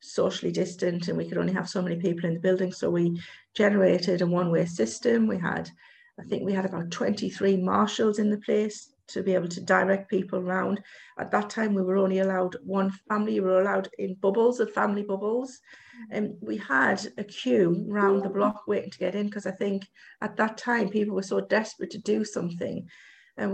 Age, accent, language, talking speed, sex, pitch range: 40-59, British, English, 205 wpm, female, 185-210 Hz